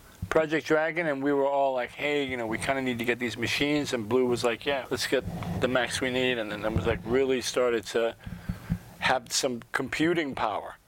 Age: 40-59